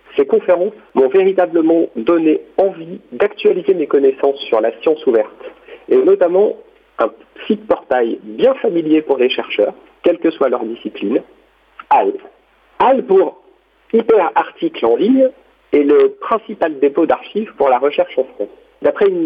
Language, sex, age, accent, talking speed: French, male, 50-69, French, 145 wpm